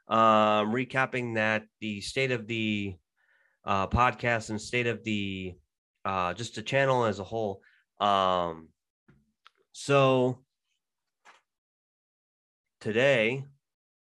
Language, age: English, 30-49